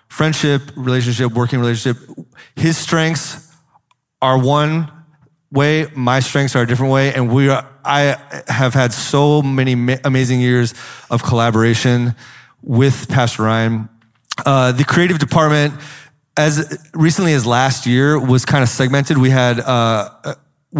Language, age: English, 30-49